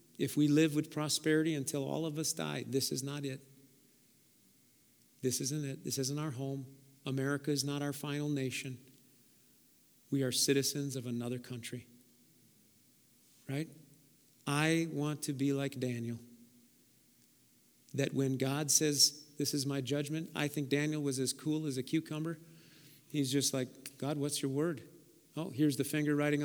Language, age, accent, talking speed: English, 50-69, American, 155 wpm